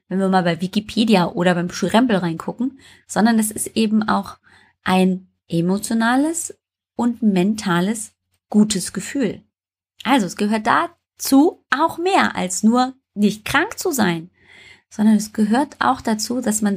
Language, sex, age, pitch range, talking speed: German, female, 30-49, 185-265 Hz, 140 wpm